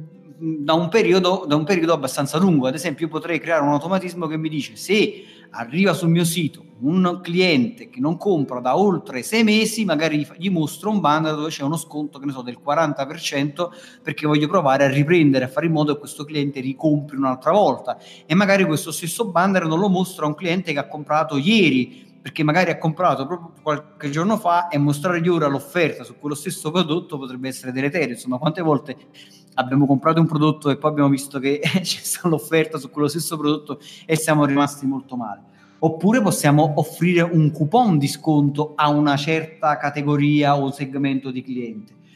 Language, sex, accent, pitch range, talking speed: Italian, male, native, 145-175 Hz, 190 wpm